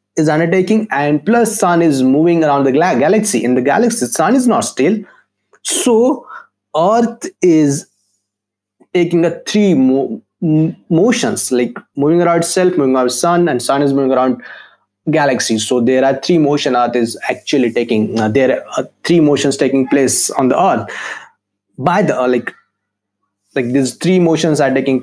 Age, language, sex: 20-39, Hindi, male